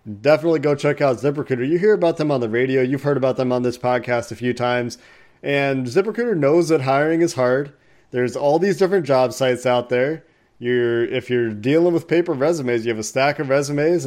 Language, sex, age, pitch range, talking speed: English, male, 30-49, 125-165 Hz, 215 wpm